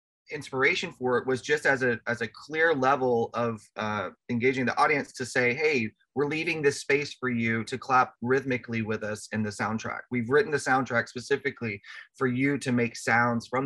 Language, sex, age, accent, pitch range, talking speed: English, male, 30-49, American, 115-135 Hz, 195 wpm